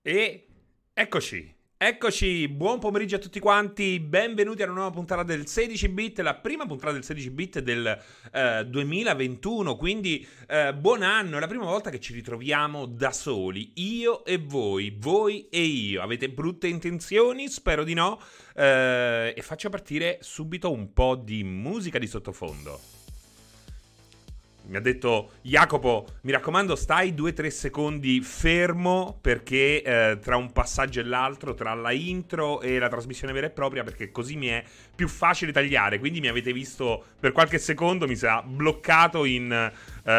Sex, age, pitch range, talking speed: male, 30-49, 120-175 Hz, 155 wpm